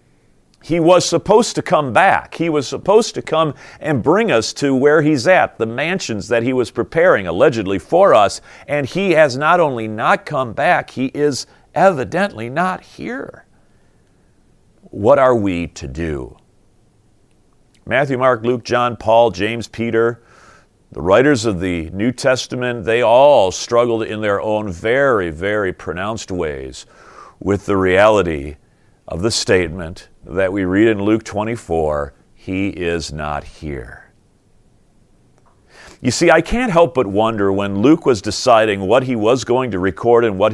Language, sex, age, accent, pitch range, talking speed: English, male, 40-59, American, 105-155 Hz, 150 wpm